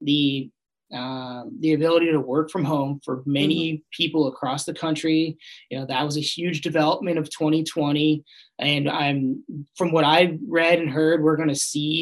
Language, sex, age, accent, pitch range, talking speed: English, male, 20-39, American, 150-170 Hz, 175 wpm